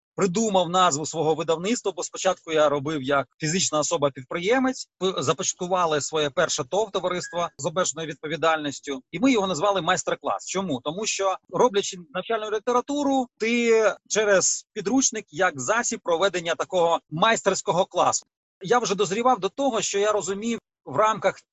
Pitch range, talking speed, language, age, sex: 160-205 Hz, 135 wpm, Ukrainian, 30-49, male